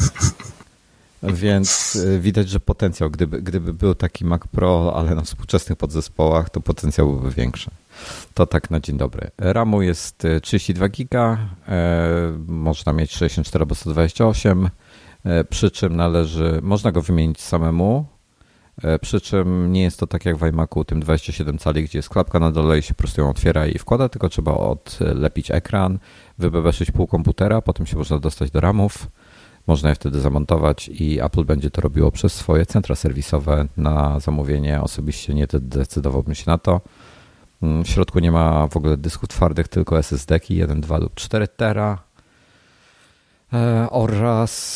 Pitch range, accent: 80-95 Hz, native